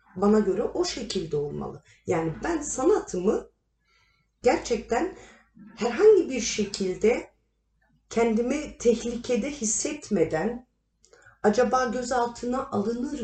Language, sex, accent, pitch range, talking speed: Turkish, female, native, 205-340 Hz, 80 wpm